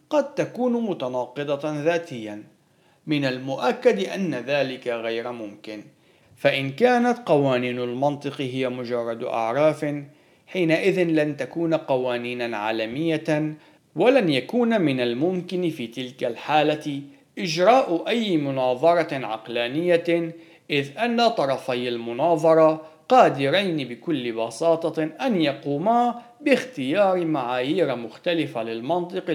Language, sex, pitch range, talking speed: Arabic, male, 130-175 Hz, 95 wpm